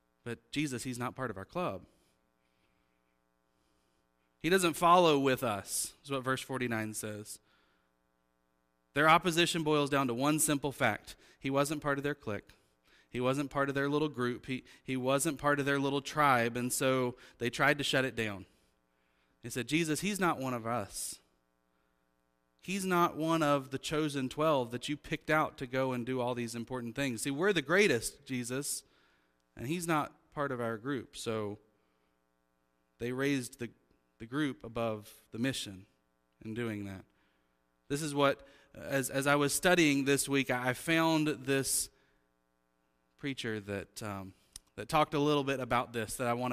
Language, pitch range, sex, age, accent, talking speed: English, 100-145 Hz, male, 30-49, American, 170 wpm